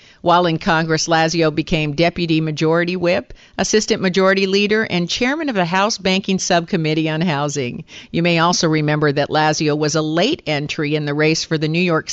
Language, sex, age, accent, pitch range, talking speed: English, female, 50-69, American, 155-185 Hz, 185 wpm